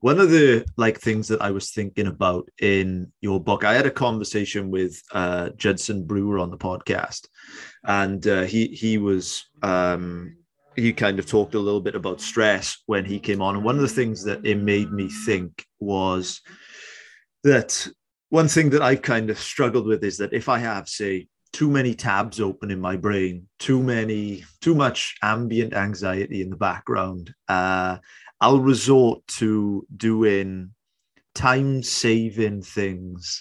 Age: 30-49